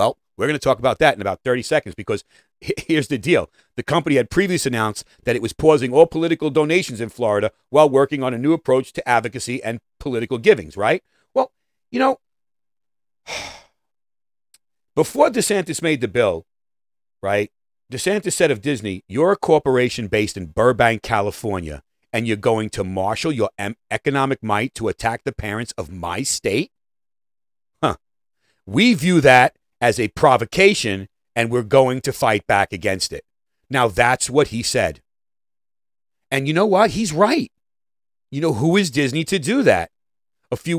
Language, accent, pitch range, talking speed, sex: English, American, 110-160 Hz, 165 wpm, male